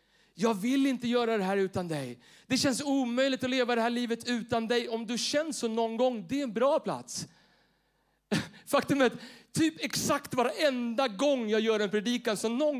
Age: 30-49